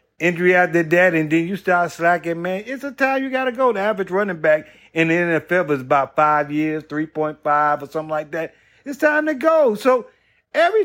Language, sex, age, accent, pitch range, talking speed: English, male, 50-69, American, 165-240 Hz, 210 wpm